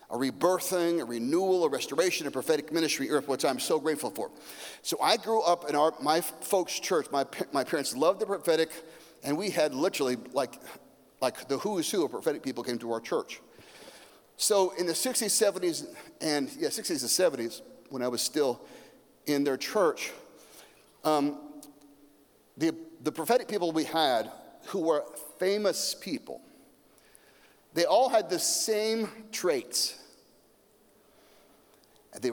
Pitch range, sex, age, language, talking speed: 145-225 Hz, male, 40-59, English, 150 wpm